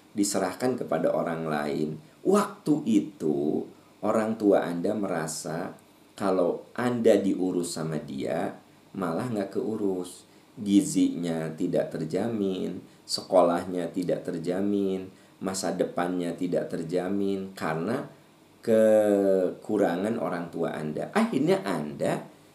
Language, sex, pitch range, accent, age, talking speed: Indonesian, male, 85-105 Hz, native, 40-59, 95 wpm